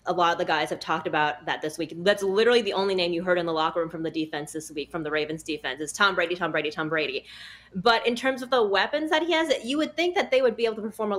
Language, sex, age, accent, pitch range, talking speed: English, female, 20-39, American, 175-230 Hz, 310 wpm